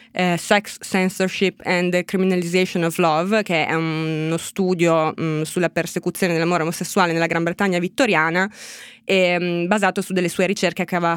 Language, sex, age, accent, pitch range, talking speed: Italian, female, 20-39, native, 165-190 Hz, 140 wpm